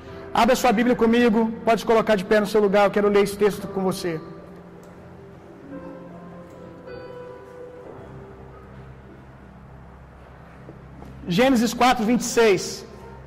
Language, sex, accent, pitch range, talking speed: Gujarati, male, Brazilian, 190-270 Hz, 95 wpm